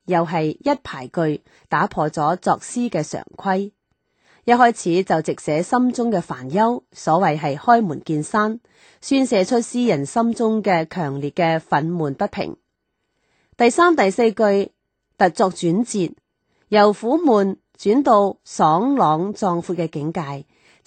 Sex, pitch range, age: female, 160-225 Hz, 30-49